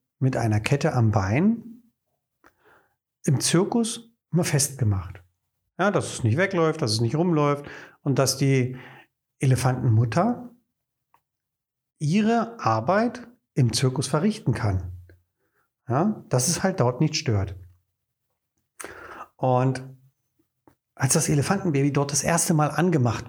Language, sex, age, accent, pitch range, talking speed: German, male, 40-59, German, 130-180 Hz, 110 wpm